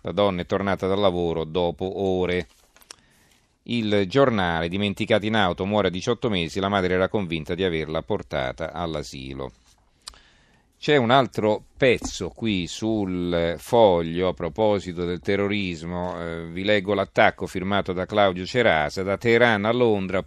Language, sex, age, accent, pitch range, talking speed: Italian, male, 40-59, native, 90-105 Hz, 140 wpm